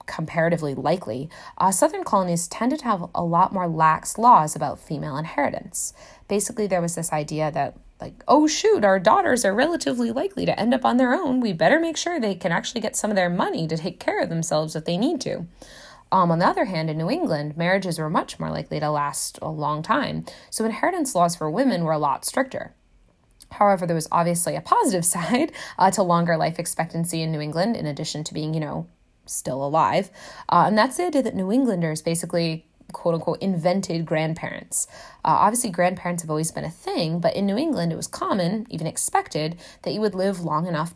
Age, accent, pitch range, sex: 20-39, American, 165-250 Hz, female